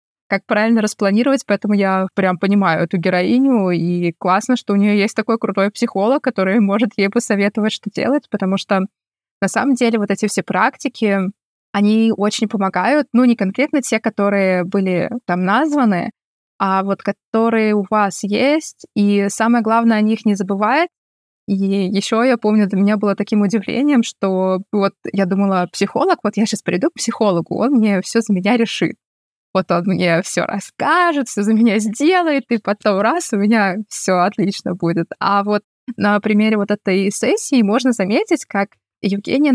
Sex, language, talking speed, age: female, Russian, 170 wpm, 20-39